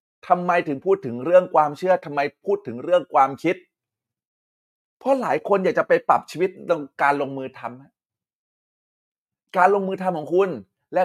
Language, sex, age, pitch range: Thai, male, 20-39, 125-180 Hz